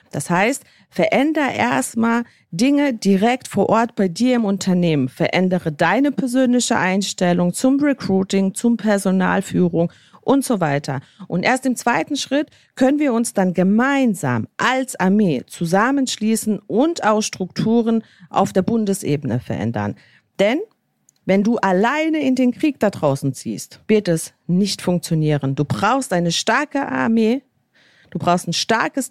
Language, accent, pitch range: German, German, 175-245 Hz